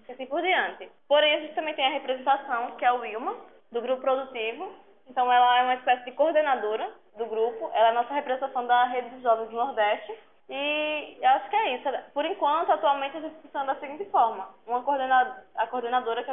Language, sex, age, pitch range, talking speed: Portuguese, female, 10-29, 235-290 Hz, 215 wpm